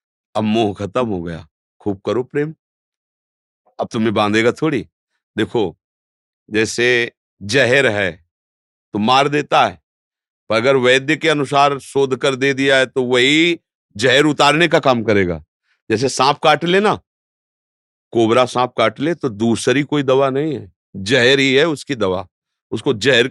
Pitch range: 105-145 Hz